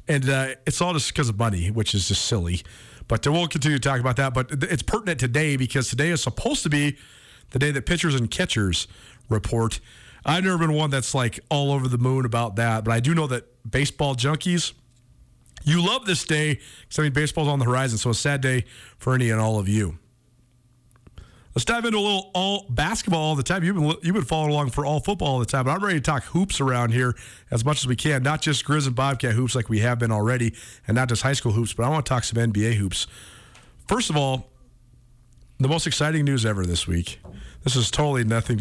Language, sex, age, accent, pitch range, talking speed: English, male, 40-59, American, 115-155 Hz, 235 wpm